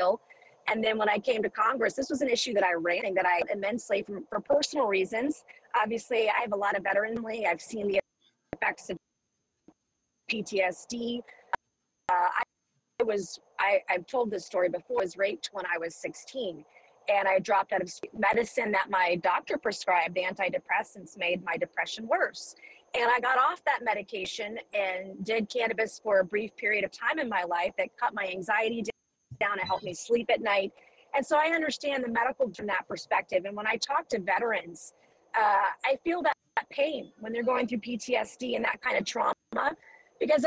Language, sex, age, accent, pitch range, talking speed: English, female, 30-49, American, 200-255 Hz, 190 wpm